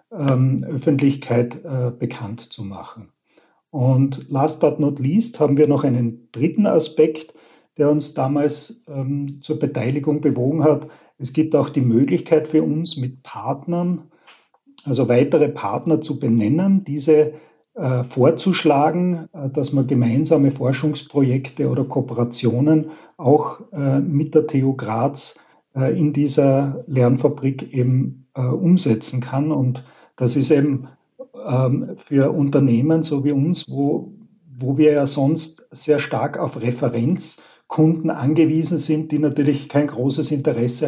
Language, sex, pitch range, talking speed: German, male, 130-155 Hz, 115 wpm